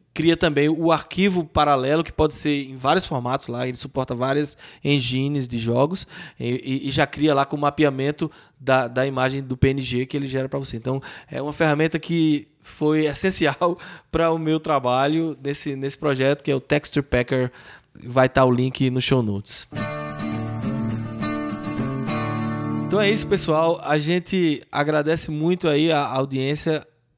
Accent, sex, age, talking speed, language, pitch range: Brazilian, male, 20-39, 160 wpm, Portuguese, 135-170 Hz